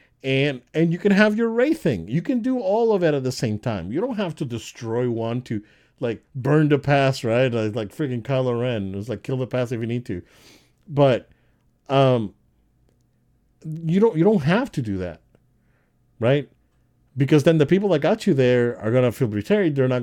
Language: English